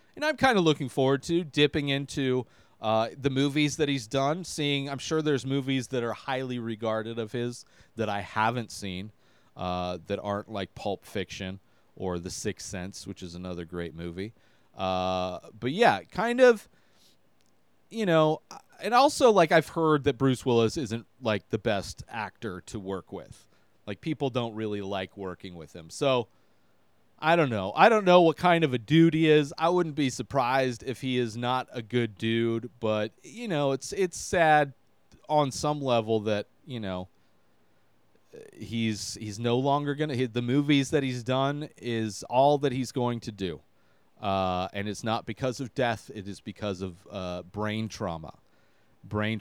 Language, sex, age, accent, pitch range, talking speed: English, male, 30-49, American, 100-140 Hz, 175 wpm